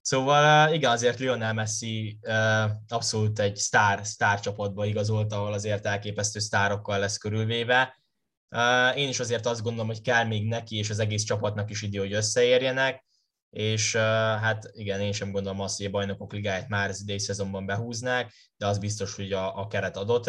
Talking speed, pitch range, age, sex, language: 165 wpm, 100-120 Hz, 10-29, male, Hungarian